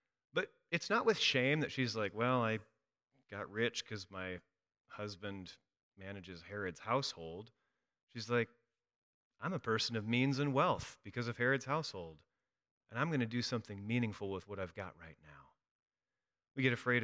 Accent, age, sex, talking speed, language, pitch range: American, 30-49, male, 165 wpm, English, 95-125 Hz